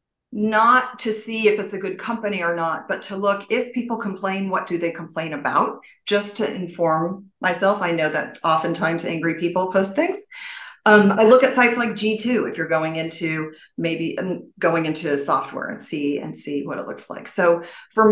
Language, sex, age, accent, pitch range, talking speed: English, female, 40-59, American, 170-230 Hz, 195 wpm